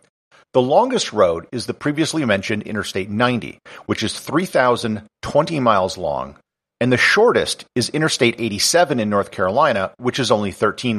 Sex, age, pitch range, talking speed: male, 50-69, 110-145 Hz, 145 wpm